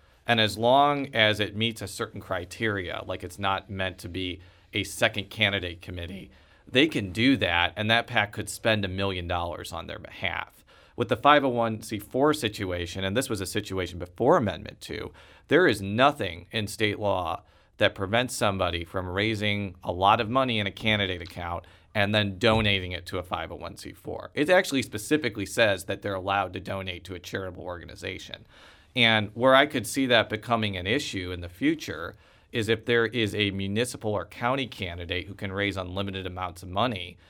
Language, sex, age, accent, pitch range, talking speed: English, male, 40-59, American, 90-115 Hz, 180 wpm